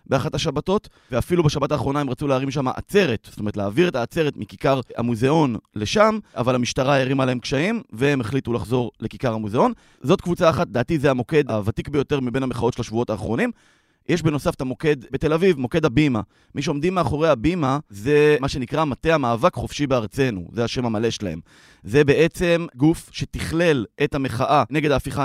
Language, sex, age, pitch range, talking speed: Hebrew, male, 30-49, 120-160 Hz, 170 wpm